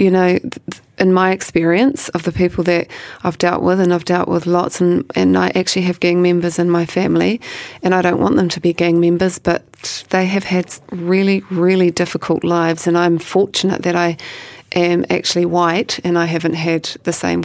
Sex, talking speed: female, 200 wpm